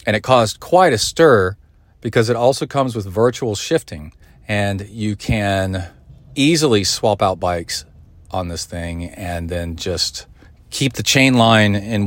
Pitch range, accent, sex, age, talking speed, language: 90-115 Hz, American, male, 40-59, 155 wpm, English